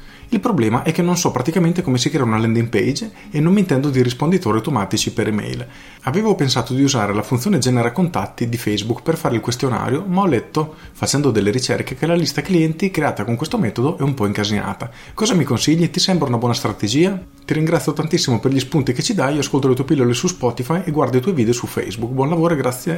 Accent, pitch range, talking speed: native, 110-145 Hz, 230 wpm